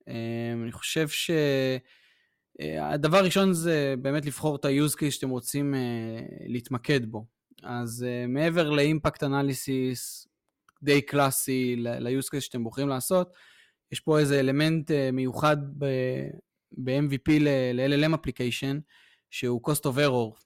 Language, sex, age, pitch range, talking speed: Hebrew, male, 20-39, 130-160 Hz, 110 wpm